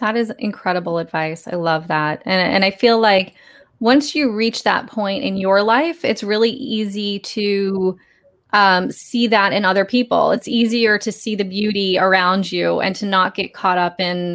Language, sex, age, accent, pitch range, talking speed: English, female, 20-39, American, 185-235 Hz, 190 wpm